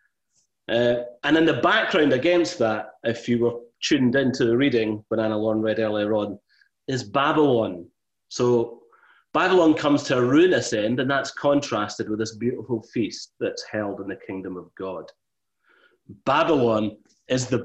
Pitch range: 110-140 Hz